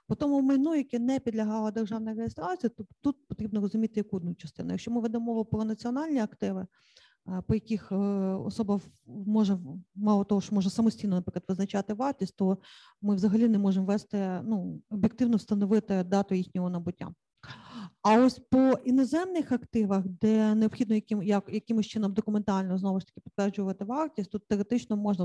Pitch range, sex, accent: 190-230 Hz, female, native